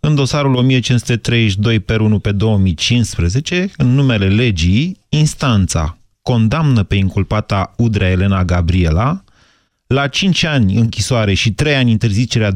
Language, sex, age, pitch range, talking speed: Romanian, male, 30-49, 100-125 Hz, 120 wpm